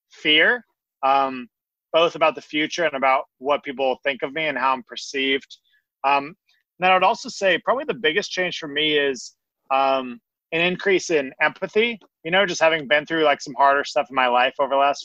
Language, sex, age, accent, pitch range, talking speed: English, male, 30-49, American, 125-160 Hz, 205 wpm